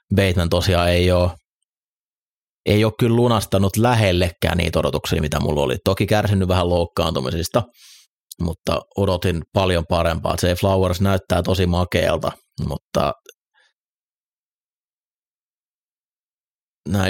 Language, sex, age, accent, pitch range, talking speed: Finnish, male, 30-49, native, 85-95 Hz, 100 wpm